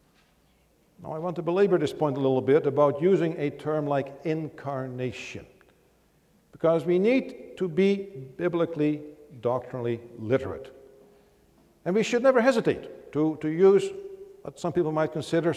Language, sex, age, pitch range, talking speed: English, male, 60-79, 140-215 Hz, 145 wpm